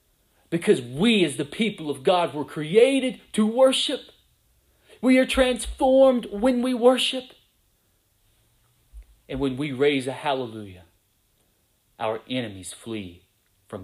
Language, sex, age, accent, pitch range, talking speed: English, male, 30-49, American, 115-175 Hz, 115 wpm